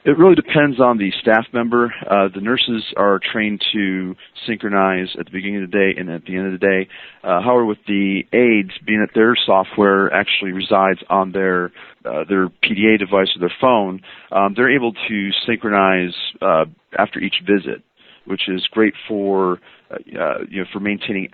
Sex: male